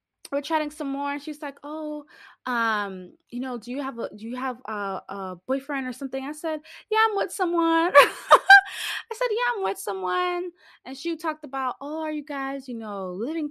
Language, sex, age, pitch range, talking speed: English, female, 20-39, 210-305 Hz, 205 wpm